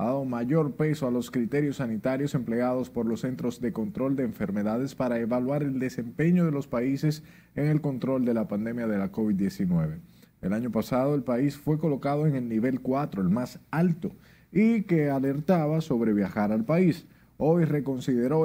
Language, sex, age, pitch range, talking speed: Spanish, male, 40-59, 115-160 Hz, 180 wpm